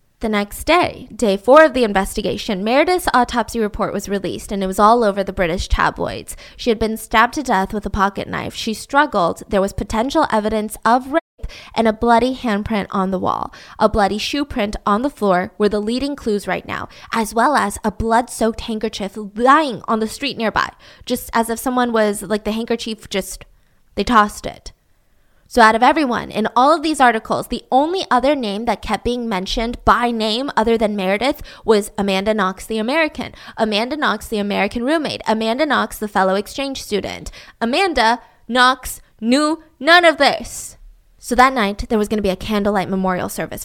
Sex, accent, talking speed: female, American, 190 wpm